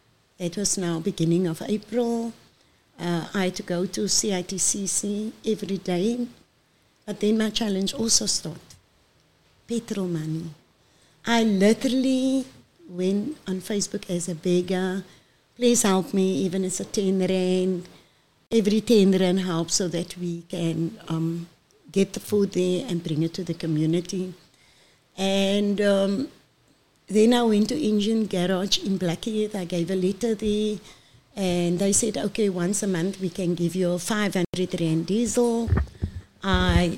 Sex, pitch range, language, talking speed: female, 175-210 Hz, English, 145 wpm